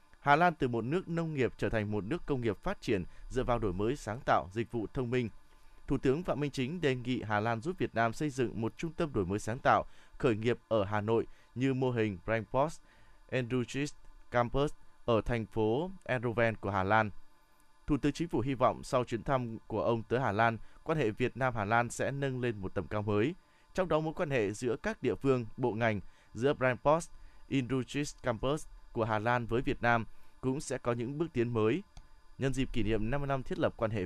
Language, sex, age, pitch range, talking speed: Vietnamese, male, 20-39, 110-145 Hz, 220 wpm